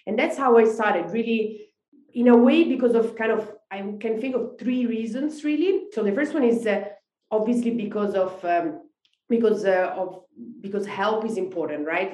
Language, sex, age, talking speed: English, female, 30-49, 190 wpm